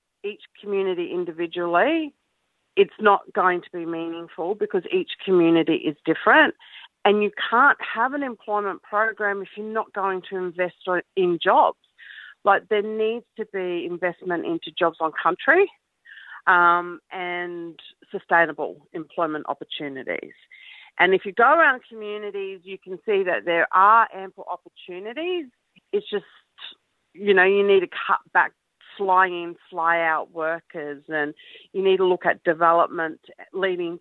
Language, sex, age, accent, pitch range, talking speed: English, female, 40-59, Australian, 170-215 Hz, 140 wpm